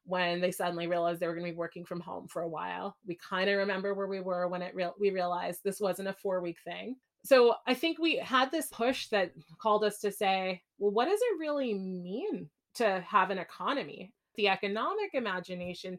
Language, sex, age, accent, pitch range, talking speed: English, female, 20-39, American, 180-205 Hz, 215 wpm